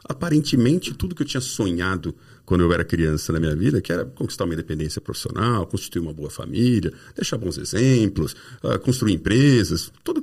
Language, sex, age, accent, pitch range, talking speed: Portuguese, male, 50-69, Brazilian, 85-125 Hz, 170 wpm